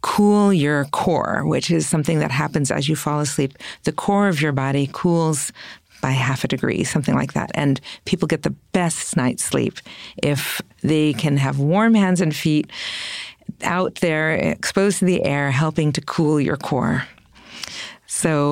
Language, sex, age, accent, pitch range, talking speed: English, female, 50-69, American, 145-185 Hz, 170 wpm